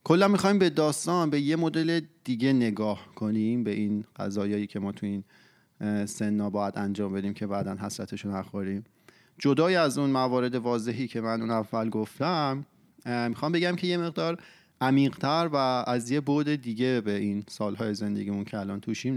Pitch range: 110-145 Hz